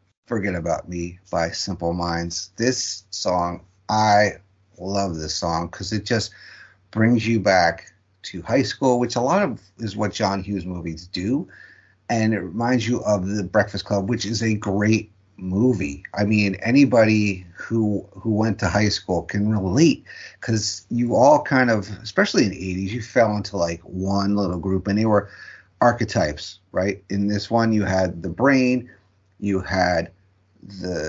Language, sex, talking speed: English, male, 165 wpm